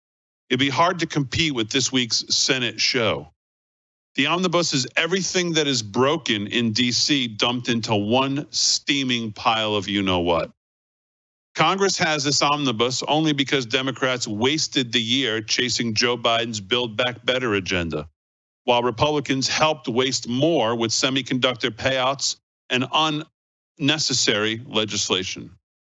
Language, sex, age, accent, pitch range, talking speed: English, male, 50-69, American, 110-145 Hz, 125 wpm